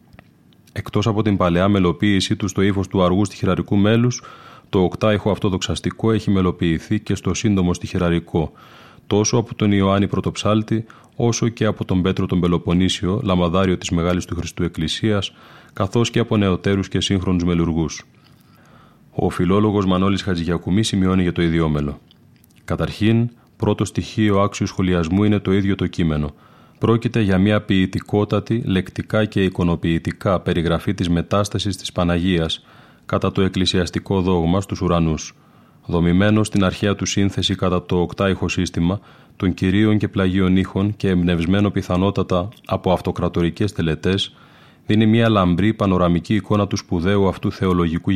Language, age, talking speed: Greek, 30-49, 140 wpm